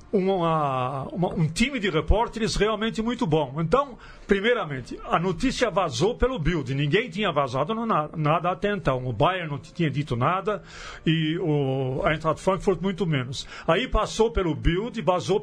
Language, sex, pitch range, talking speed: Portuguese, male, 160-235 Hz, 165 wpm